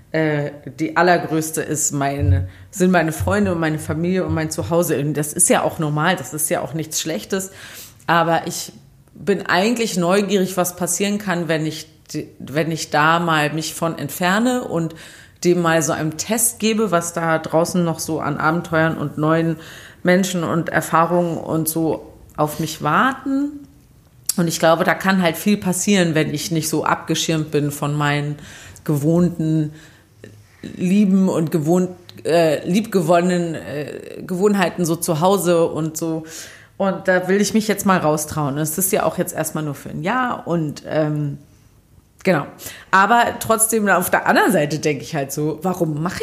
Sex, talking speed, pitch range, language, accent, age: female, 165 wpm, 155-185 Hz, German, German, 30-49